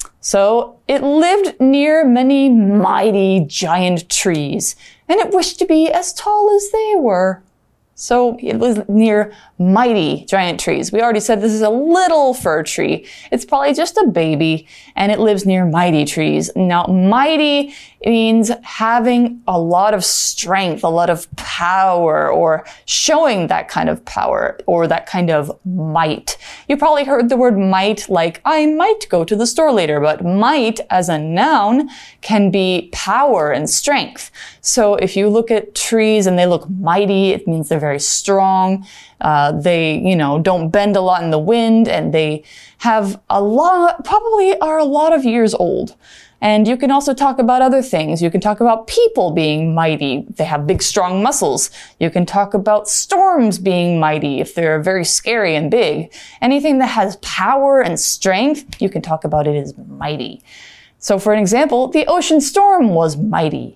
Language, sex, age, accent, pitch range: Chinese, female, 20-39, American, 175-275 Hz